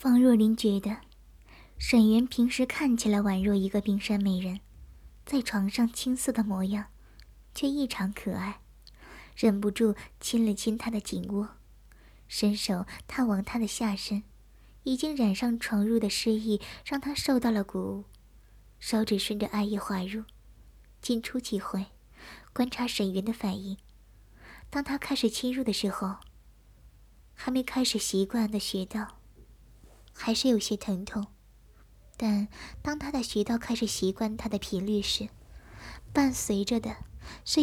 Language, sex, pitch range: Chinese, male, 205-240 Hz